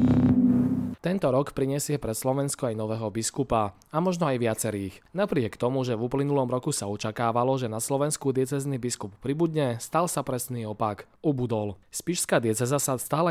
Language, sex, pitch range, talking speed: Slovak, male, 115-150 Hz, 160 wpm